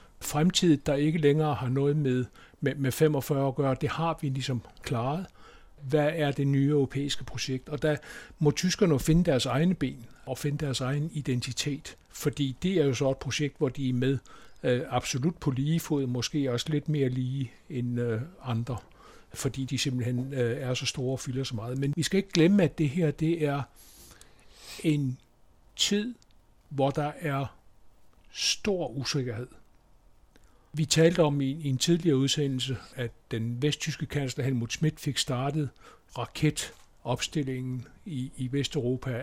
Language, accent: Danish, native